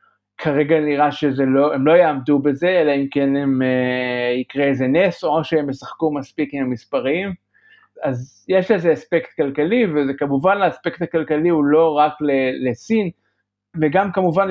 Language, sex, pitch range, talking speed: Hebrew, male, 135-170 Hz, 145 wpm